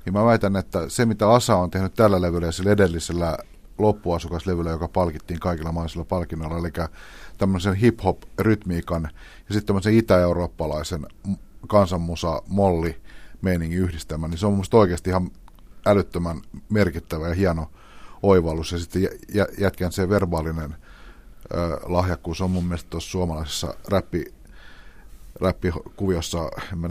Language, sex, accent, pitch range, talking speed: Finnish, male, native, 85-100 Hz, 125 wpm